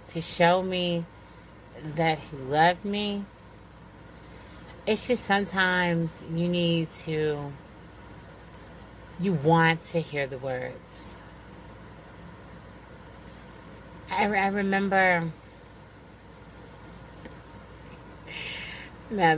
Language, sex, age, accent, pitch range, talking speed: English, female, 30-49, American, 140-175 Hz, 70 wpm